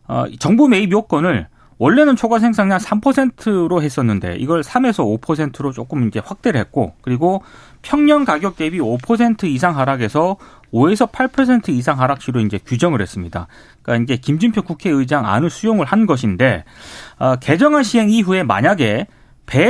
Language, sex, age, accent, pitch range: Korean, male, 30-49, native, 125-215 Hz